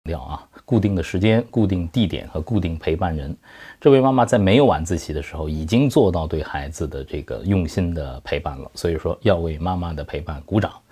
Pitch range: 75-105 Hz